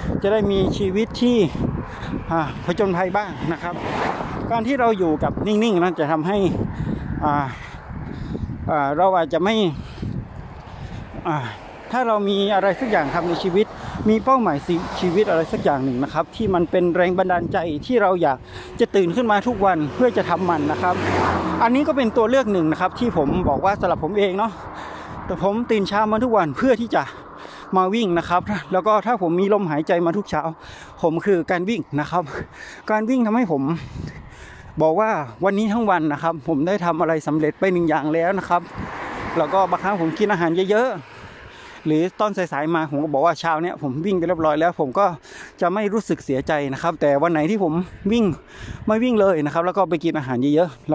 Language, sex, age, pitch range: Thai, male, 60-79, 160-210 Hz